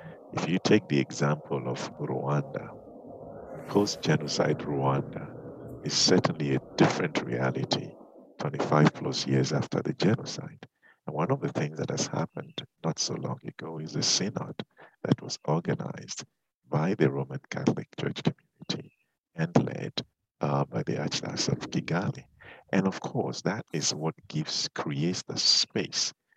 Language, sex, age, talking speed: English, male, 50-69, 140 wpm